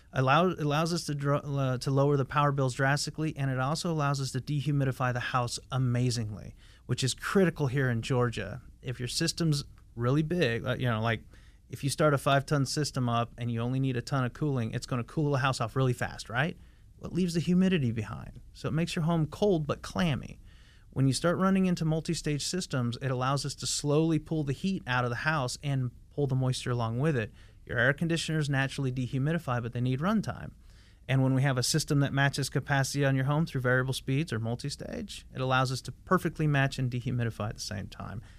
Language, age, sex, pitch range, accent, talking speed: English, 30-49, male, 120-145 Hz, American, 215 wpm